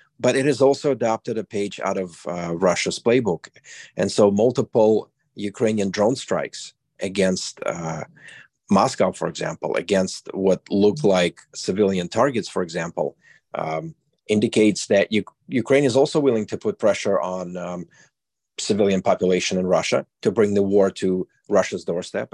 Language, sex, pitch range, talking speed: English, male, 95-110 Hz, 145 wpm